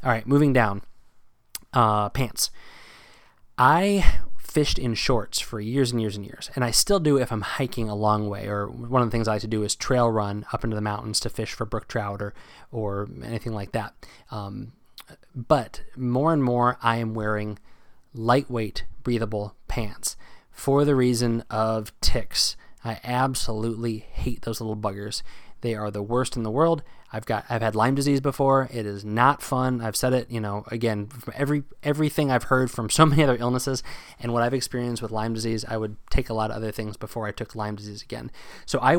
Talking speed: 200 wpm